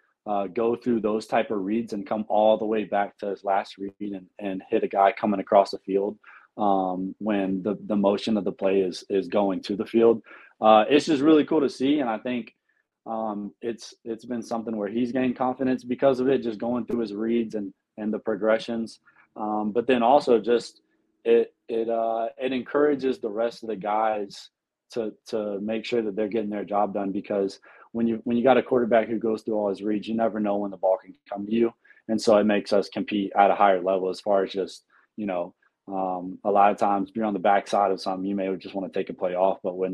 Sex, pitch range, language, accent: male, 100-115 Hz, English, American